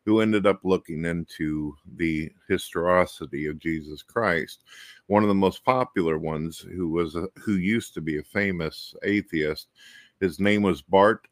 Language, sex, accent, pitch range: English, male, American, 80-100 Hz